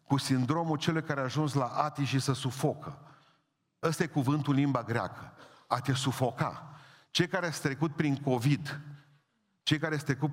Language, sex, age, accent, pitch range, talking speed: Romanian, male, 40-59, native, 145-230 Hz, 170 wpm